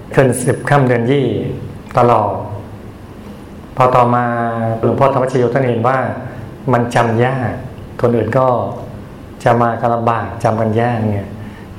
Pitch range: 110-130 Hz